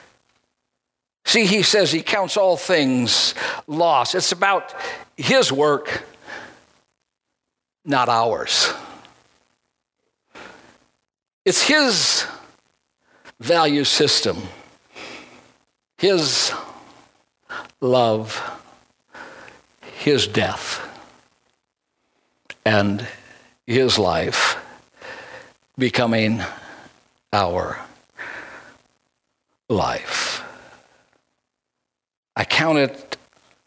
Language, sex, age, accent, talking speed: English, male, 60-79, American, 55 wpm